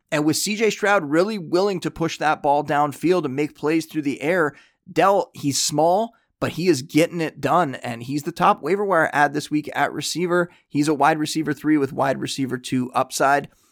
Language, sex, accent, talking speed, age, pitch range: English, male, American, 210 wpm, 20-39, 130-165 Hz